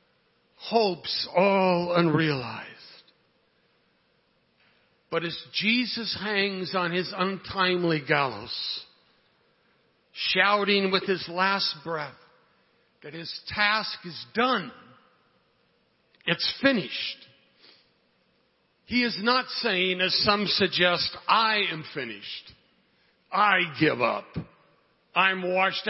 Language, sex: English, male